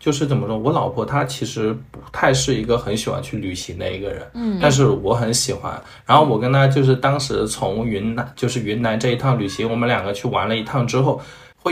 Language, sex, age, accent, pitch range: Chinese, male, 20-39, native, 110-140 Hz